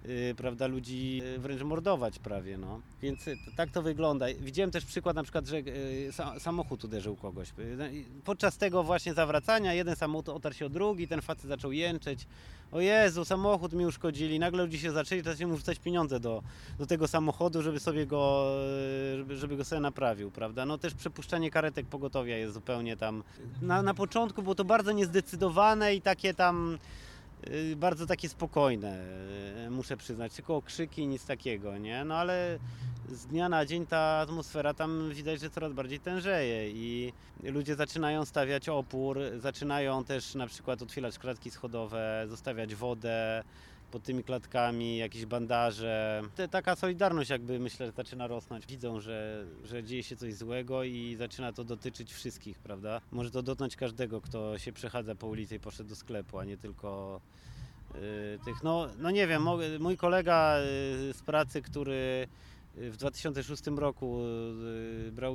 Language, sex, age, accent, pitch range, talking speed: Polish, male, 30-49, native, 115-160 Hz, 155 wpm